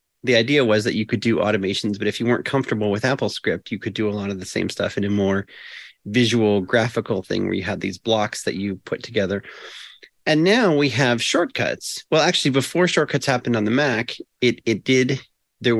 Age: 30-49